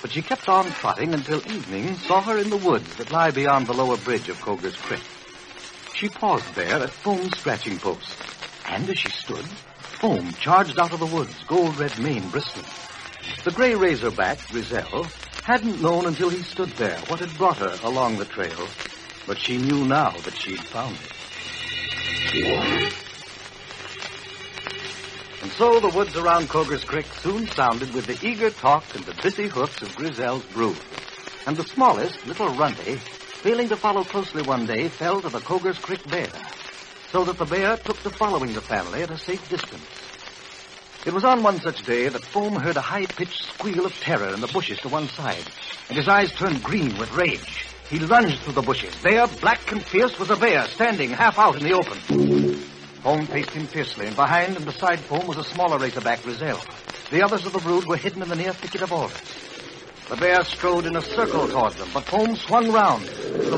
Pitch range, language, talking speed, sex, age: 145-200 Hz, English, 190 wpm, male, 70-89